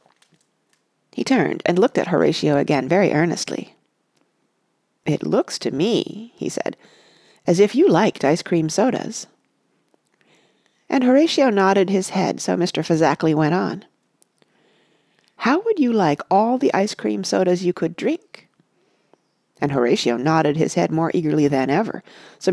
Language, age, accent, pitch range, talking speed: English, 40-59, American, 165-255 Hz, 140 wpm